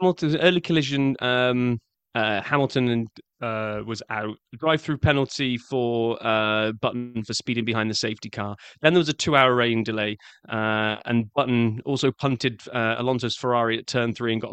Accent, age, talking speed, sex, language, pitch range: British, 20-39, 170 wpm, male, English, 115-140 Hz